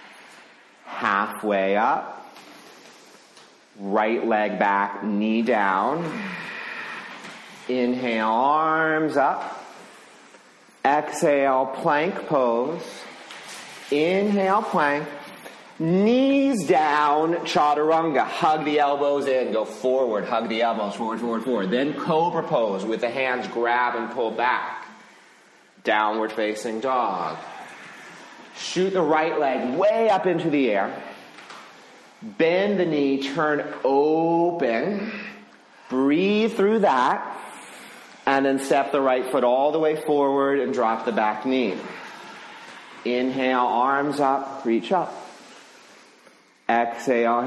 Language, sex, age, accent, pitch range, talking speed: English, male, 40-59, American, 115-160 Hz, 100 wpm